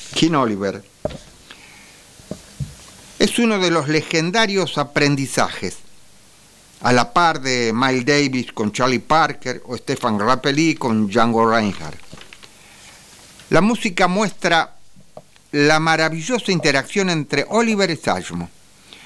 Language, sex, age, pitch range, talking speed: English, male, 50-69, 115-160 Hz, 105 wpm